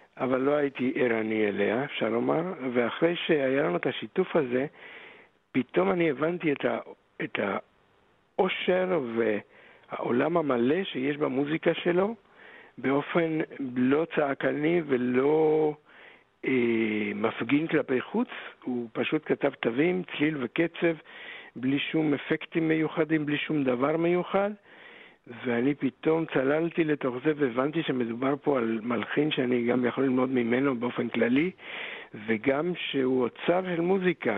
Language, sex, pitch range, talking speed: Hebrew, male, 125-165 Hz, 115 wpm